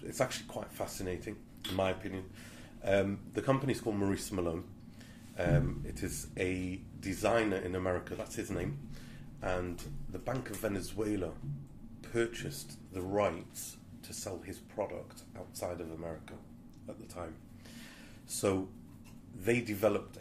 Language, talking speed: English, 135 wpm